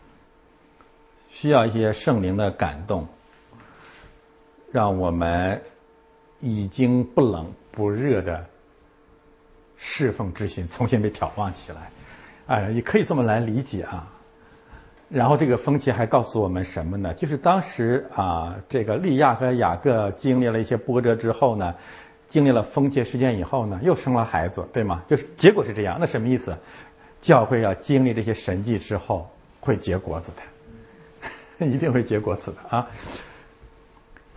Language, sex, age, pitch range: Chinese, male, 60-79, 100-140 Hz